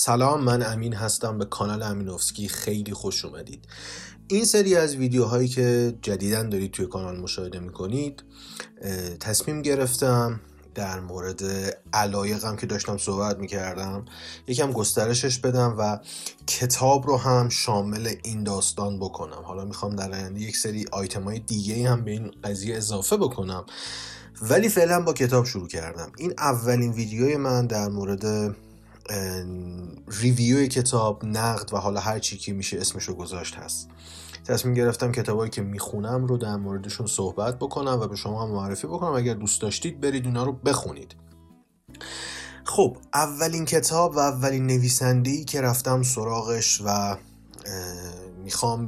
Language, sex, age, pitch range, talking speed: Persian, male, 30-49, 100-125 Hz, 140 wpm